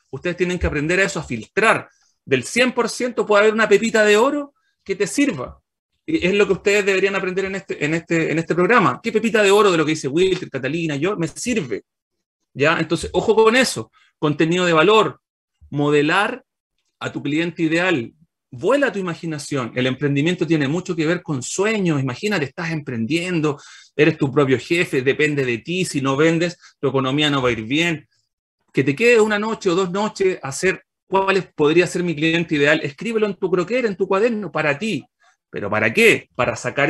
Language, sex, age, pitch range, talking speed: Spanish, male, 40-59, 145-195 Hz, 195 wpm